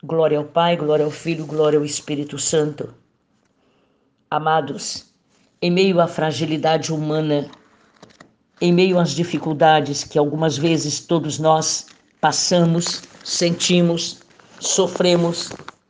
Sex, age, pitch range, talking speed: female, 50-69, 150-175 Hz, 105 wpm